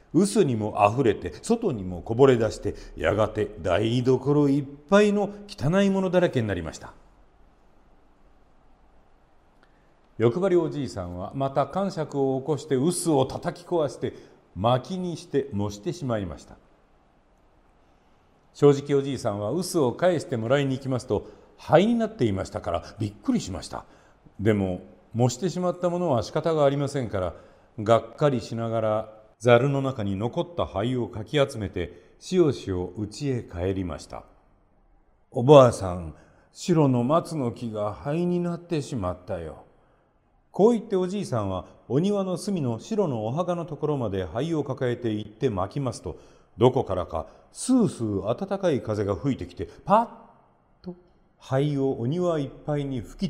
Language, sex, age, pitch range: Japanese, male, 50-69, 105-165 Hz